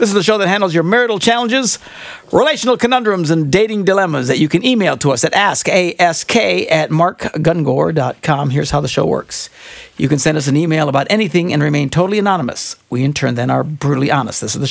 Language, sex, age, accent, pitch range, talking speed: English, male, 60-79, American, 145-215 Hz, 210 wpm